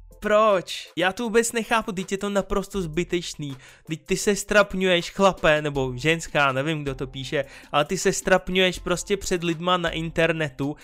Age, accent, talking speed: 20-39, native, 165 wpm